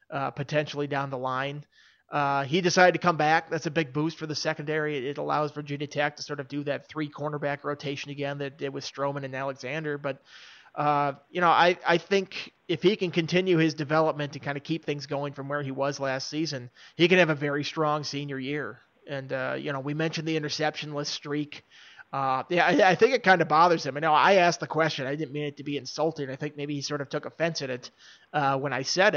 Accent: American